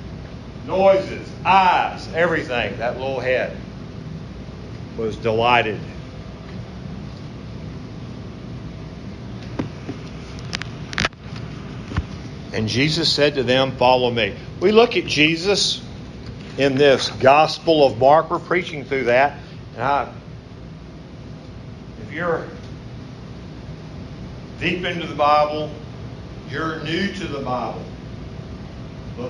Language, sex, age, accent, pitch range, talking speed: English, male, 50-69, American, 125-155 Hz, 85 wpm